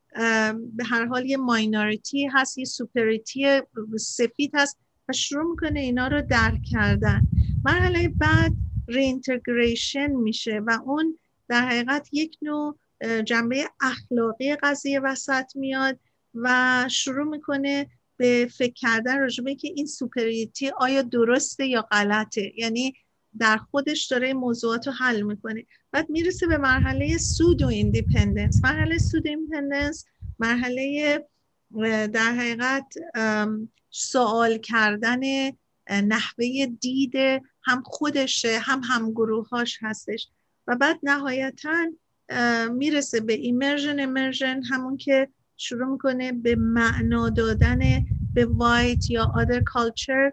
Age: 50-69